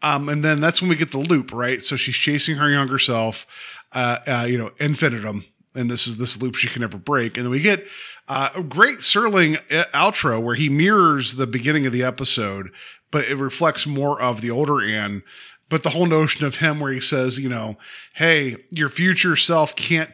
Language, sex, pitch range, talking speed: English, male, 125-170 Hz, 210 wpm